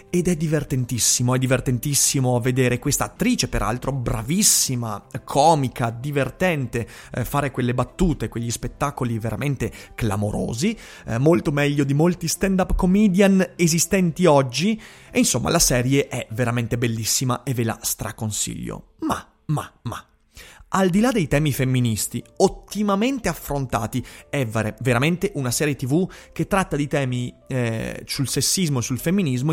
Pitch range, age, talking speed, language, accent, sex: 120-165 Hz, 30-49, 135 wpm, Italian, native, male